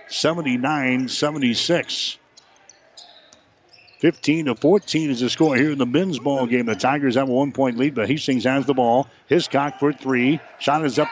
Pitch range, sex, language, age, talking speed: 125-145 Hz, male, English, 60-79, 150 wpm